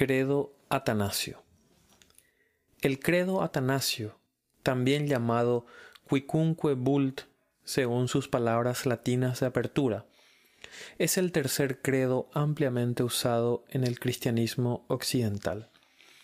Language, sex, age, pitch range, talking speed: Spanish, male, 30-49, 125-145 Hz, 90 wpm